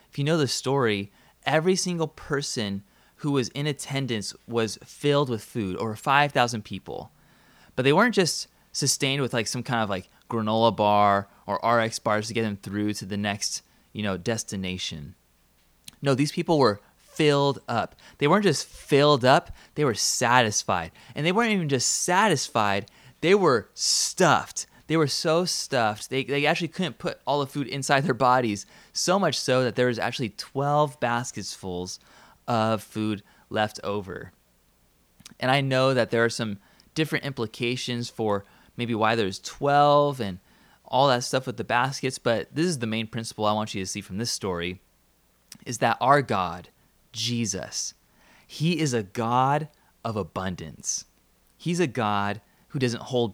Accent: American